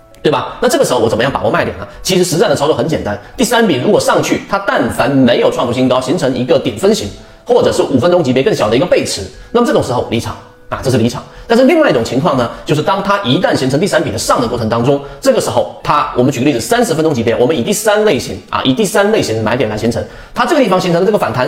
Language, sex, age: Chinese, male, 30-49